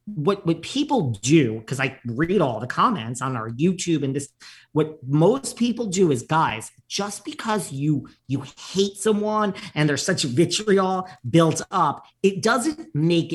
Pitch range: 140-195 Hz